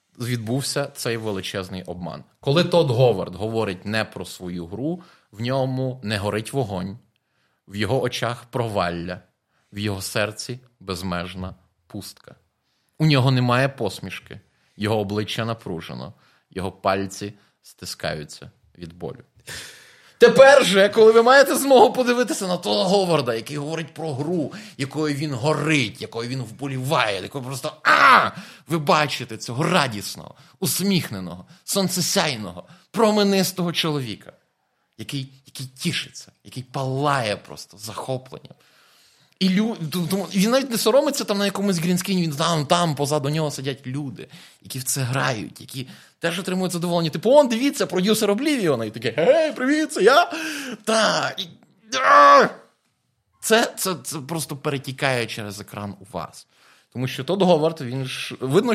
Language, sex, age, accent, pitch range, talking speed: Ukrainian, male, 30-49, native, 115-185 Hz, 135 wpm